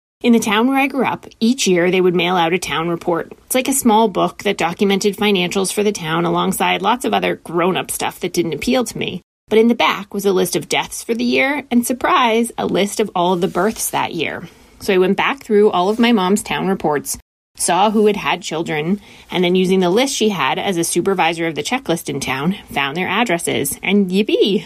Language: English